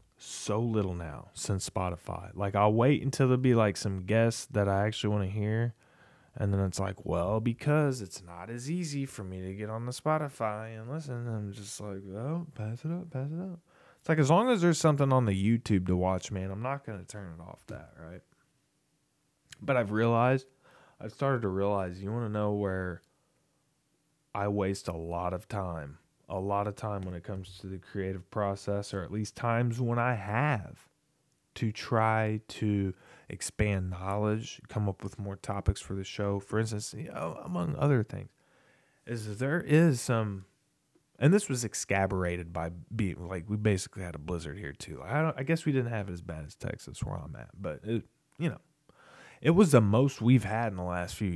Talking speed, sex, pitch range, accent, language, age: 205 wpm, male, 95-125 Hz, American, English, 20-39